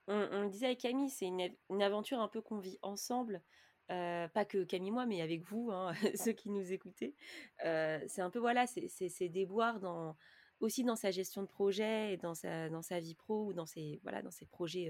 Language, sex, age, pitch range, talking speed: French, female, 20-39, 180-230 Hz, 235 wpm